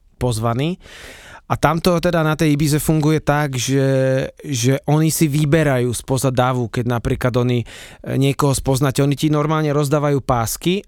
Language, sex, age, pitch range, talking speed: Slovak, male, 20-39, 125-150 Hz, 145 wpm